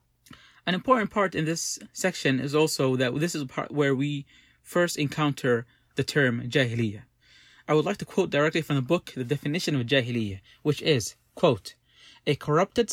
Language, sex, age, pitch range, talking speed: English, male, 30-49, 135-175 Hz, 170 wpm